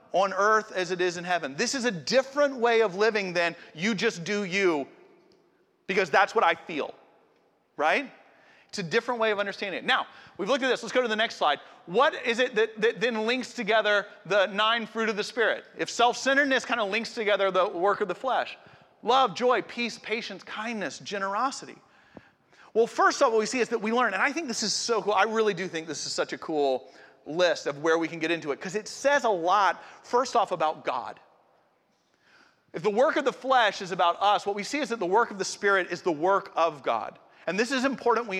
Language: English